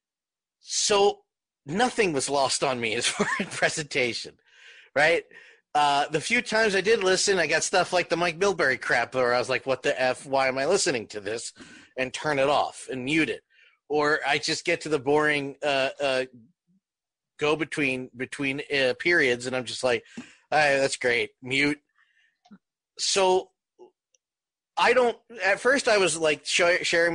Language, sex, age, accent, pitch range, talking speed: English, male, 30-49, American, 145-205 Hz, 175 wpm